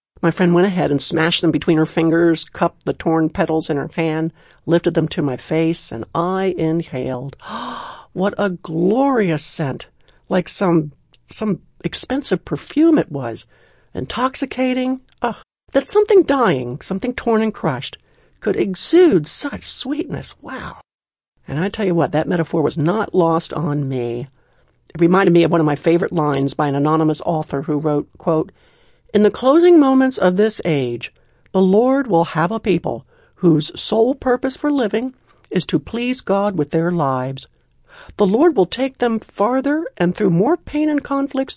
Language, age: English, 60-79